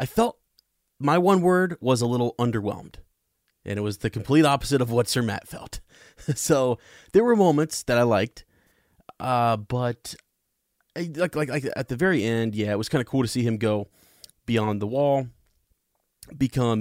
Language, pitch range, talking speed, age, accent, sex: English, 115-155 Hz, 180 wpm, 30-49, American, male